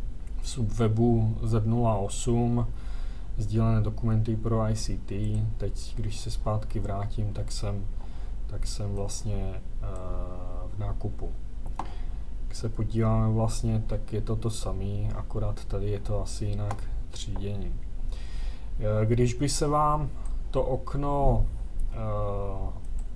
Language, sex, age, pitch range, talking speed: Czech, male, 30-49, 105-120 Hz, 115 wpm